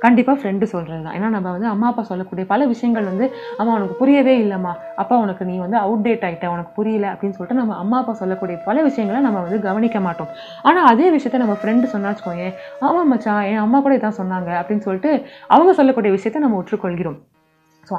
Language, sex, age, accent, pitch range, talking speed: Tamil, female, 20-39, native, 190-255 Hz, 195 wpm